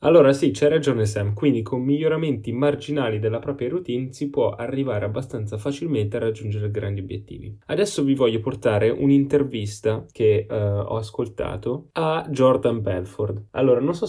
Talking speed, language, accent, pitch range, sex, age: 150 wpm, Italian, native, 110-145 Hz, male, 10-29